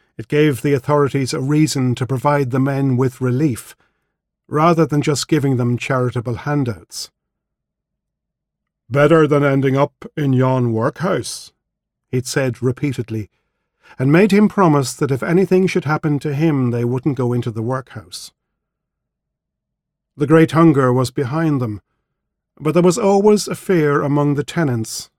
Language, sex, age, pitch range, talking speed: English, male, 50-69, 130-160 Hz, 145 wpm